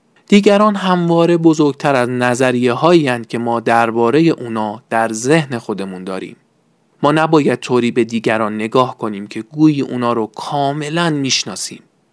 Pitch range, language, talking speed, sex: 120-170 Hz, Persian, 135 wpm, male